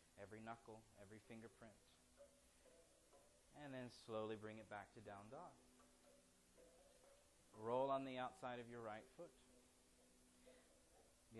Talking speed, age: 115 wpm, 30-49